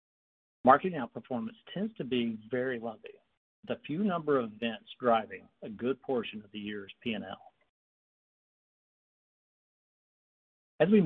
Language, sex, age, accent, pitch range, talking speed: English, male, 50-69, American, 115-170 Hz, 125 wpm